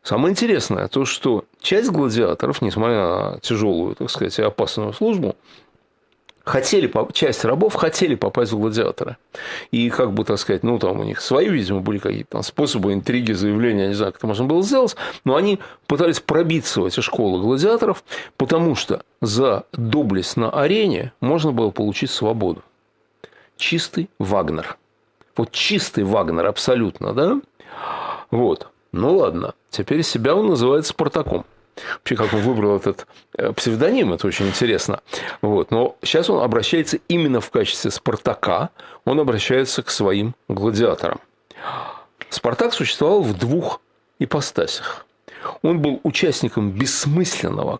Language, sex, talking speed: Russian, male, 140 wpm